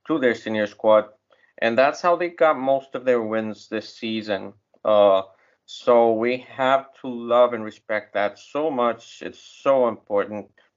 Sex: male